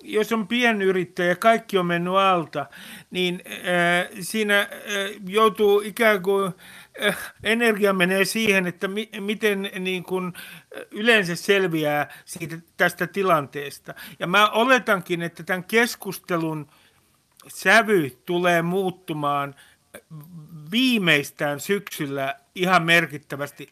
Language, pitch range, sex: Finnish, 160-210 Hz, male